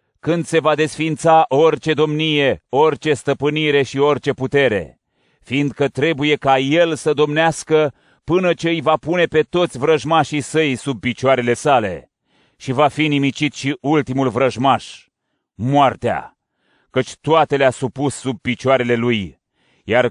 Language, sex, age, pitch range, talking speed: Romanian, male, 30-49, 135-155 Hz, 135 wpm